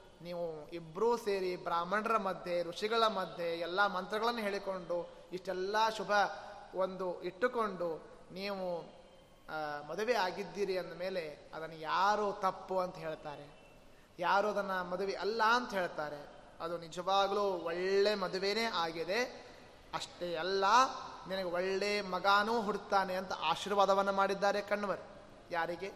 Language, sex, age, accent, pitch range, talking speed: Kannada, male, 20-39, native, 170-225 Hz, 110 wpm